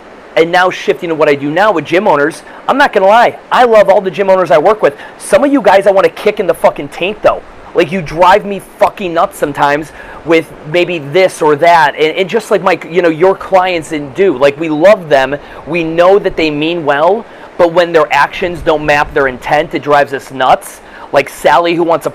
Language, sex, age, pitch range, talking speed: English, male, 30-49, 150-185 Hz, 235 wpm